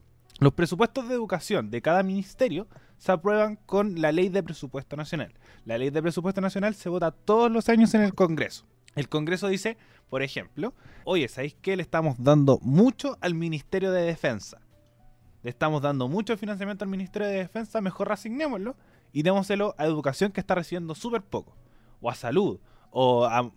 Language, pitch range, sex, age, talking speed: Spanish, 125-195 Hz, male, 20-39, 175 wpm